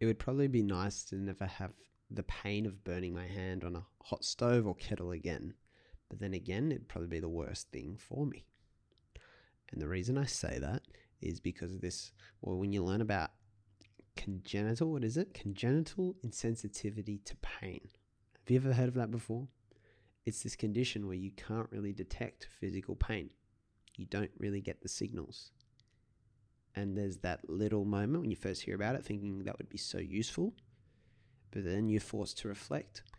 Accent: Australian